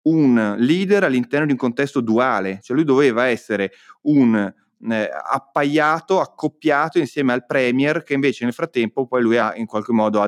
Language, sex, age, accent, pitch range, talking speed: Italian, male, 30-49, native, 105-140 Hz, 165 wpm